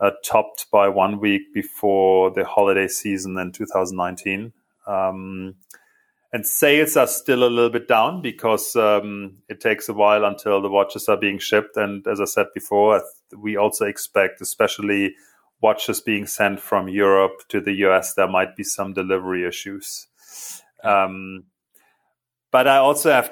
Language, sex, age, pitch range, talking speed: English, male, 30-49, 95-105 Hz, 155 wpm